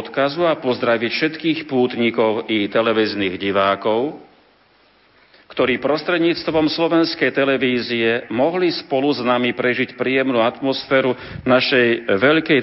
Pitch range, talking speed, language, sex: 115-150 Hz, 95 wpm, Slovak, male